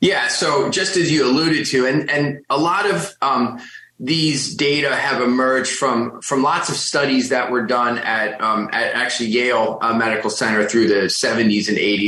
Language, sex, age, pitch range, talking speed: English, male, 30-49, 110-135 Hz, 180 wpm